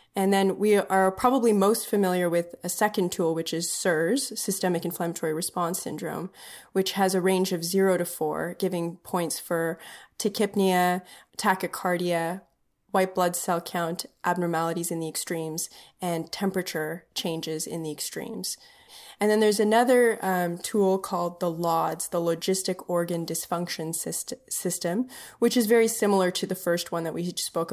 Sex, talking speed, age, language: female, 155 wpm, 20-39, English